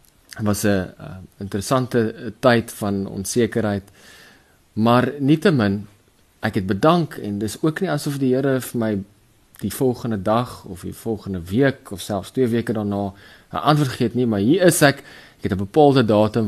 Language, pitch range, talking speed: English, 100-130 Hz, 170 wpm